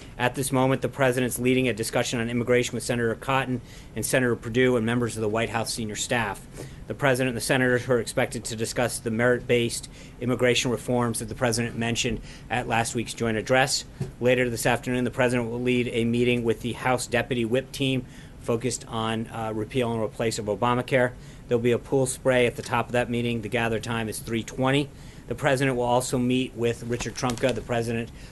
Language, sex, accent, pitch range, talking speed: English, male, American, 115-130 Hz, 205 wpm